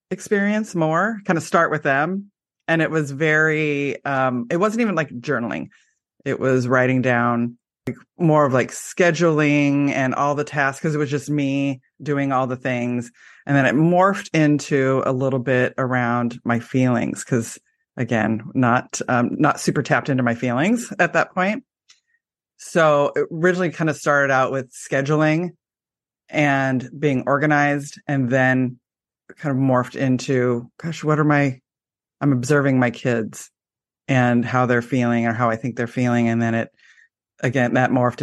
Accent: American